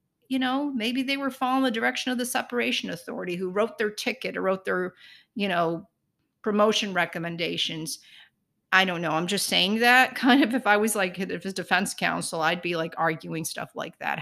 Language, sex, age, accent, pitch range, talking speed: English, female, 40-59, American, 185-255 Hz, 200 wpm